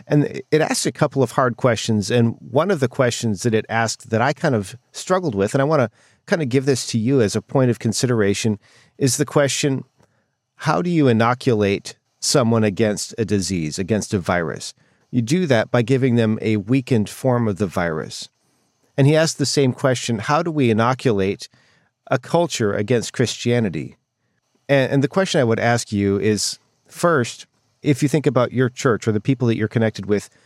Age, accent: 40-59, American